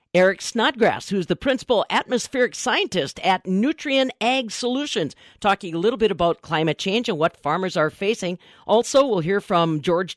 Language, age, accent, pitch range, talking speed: English, 50-69, American, 165-215 Hz, 165 wpm